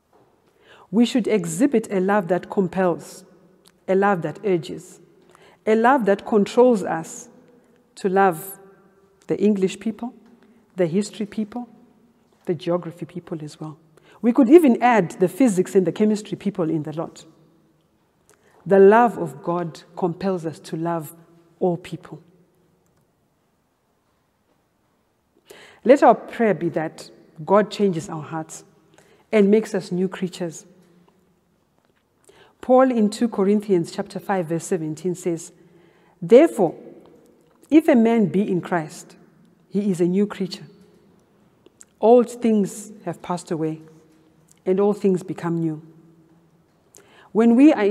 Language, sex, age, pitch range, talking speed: English, female, 40-59, 170-210 Hz, 125 wpm